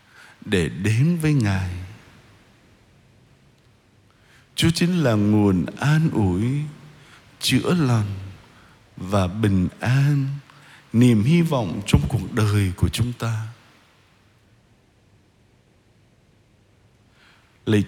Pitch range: 110-150 Hz